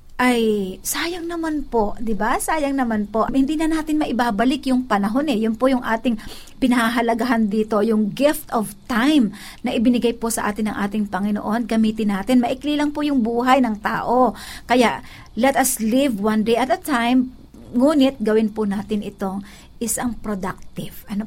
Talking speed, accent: 170 wpm, native